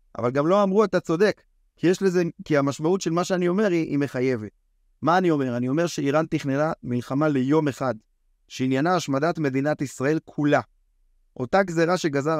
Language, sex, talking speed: Hebrew, male, 165 wpm